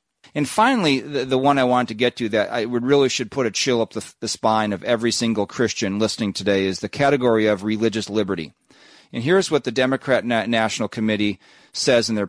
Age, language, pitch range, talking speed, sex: 40-59, English, 120-155 Hz, 215 wpm, male